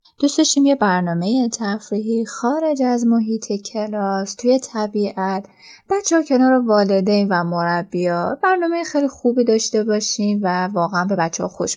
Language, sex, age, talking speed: Persian, female, 10-29, 140 wpm